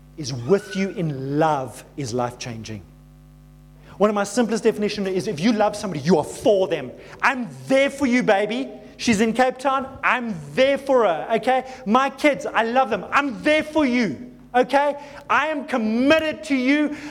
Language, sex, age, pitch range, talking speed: English, male, 30-49, 210-275 Hz, 175 wpm